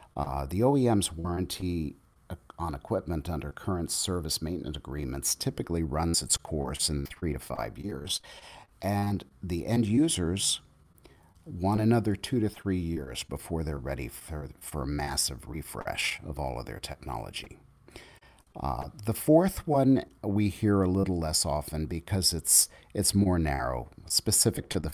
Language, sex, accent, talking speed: English, male, American, 145 wpm